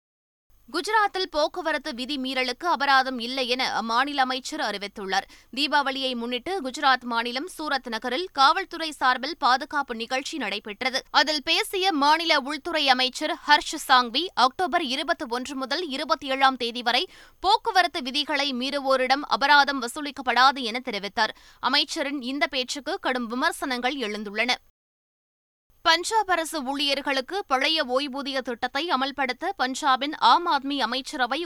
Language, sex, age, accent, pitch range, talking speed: Tamil, female, 20-39, native, 250-305 Hz, 110 wpm